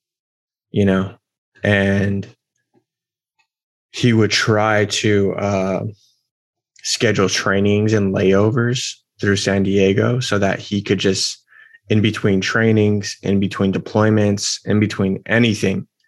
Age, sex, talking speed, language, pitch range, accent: 20-39, male, 110 wpm, English, 95-110 Hz, American